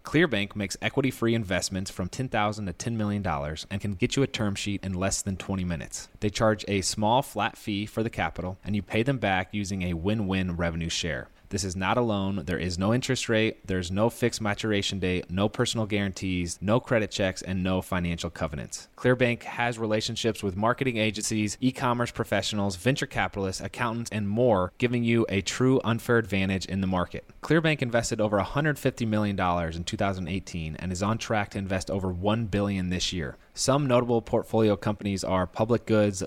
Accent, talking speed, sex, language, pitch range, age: American, 185 wpm, male, English, 95-115 Hz, 30-49